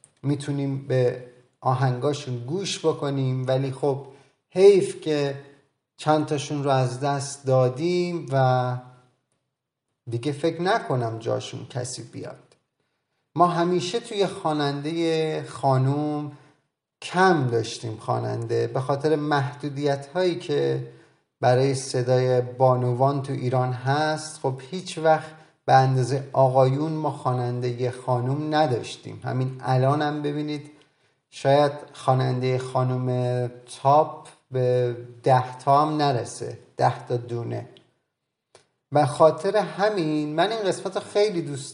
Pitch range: 130-155 Hz